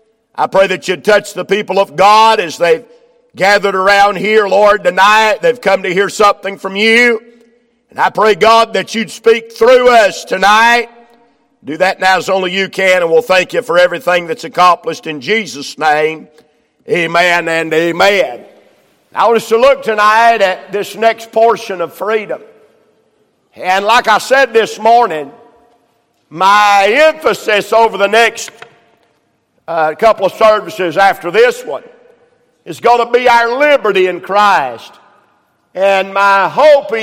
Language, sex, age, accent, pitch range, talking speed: English, male, 50-69, American, 190-235 Hz, 155 wpm